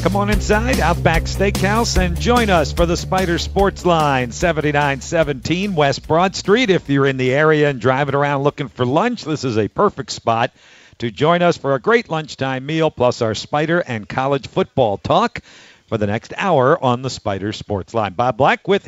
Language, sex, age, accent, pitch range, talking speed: English, male, 50-69, American, 130-160 Hz, 190 wpm